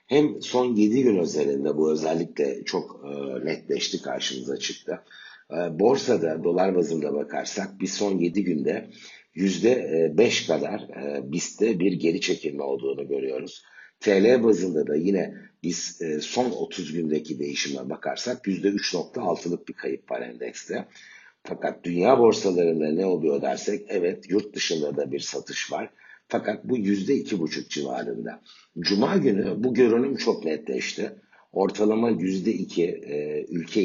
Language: Turkish